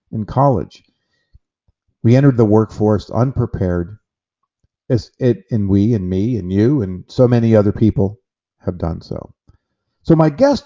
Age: 50-69